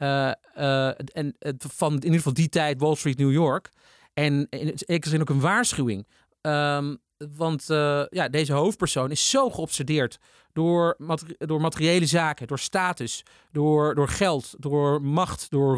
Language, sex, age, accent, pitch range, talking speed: Dutch, male, 40-59, Dutch, 140-170 Hz, 165 wpm